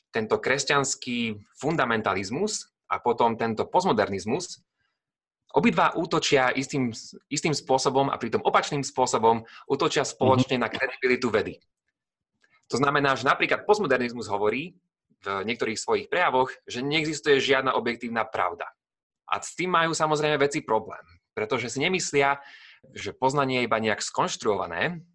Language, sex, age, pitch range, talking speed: Slovak, male, 30-49, 115-155 Hz, 125 wpm